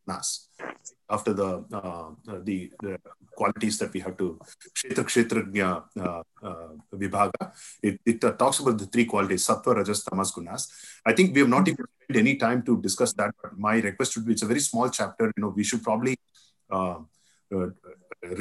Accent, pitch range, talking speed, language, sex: Indian, 100-135 Hz, 150 wpm, English, male